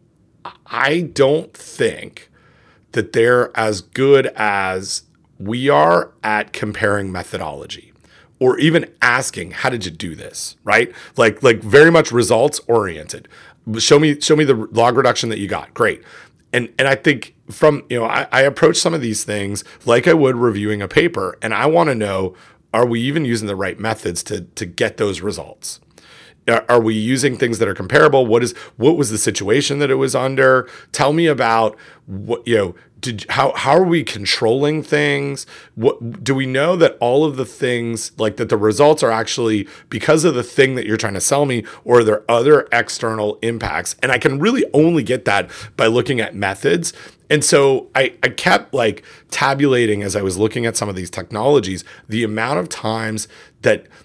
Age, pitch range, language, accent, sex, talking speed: 30-49, 105-140 Hz, English, American, male, 190 wpm